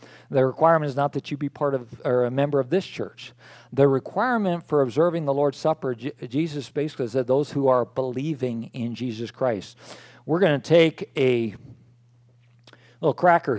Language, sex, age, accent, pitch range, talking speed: English, male, 50-69, American, 125-155 Hz, 170 wpm